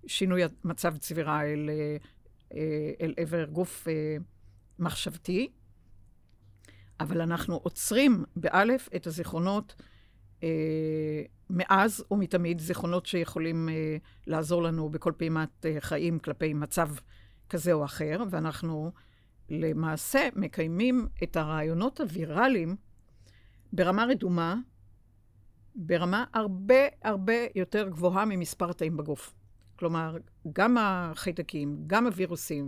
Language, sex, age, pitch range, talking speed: Hebrew, female, 60-79, 155-200 Hz, 90 wpm